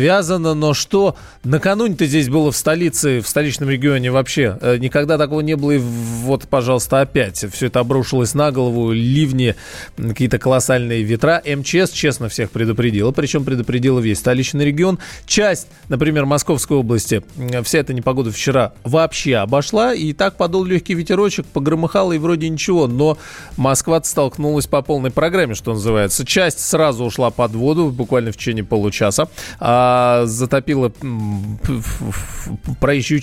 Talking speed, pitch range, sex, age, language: 140 wpm, 115-150 Hz, male, 20-39, Russian